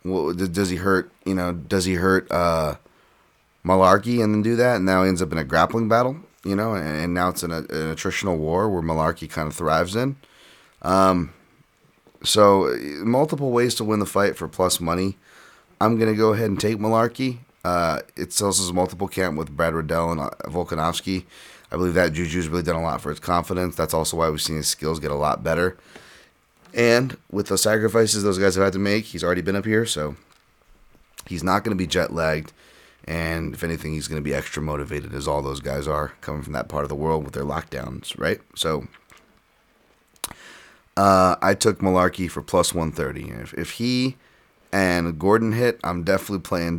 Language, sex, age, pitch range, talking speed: English, male, 30-49, 80-100 Hz, 200 wpm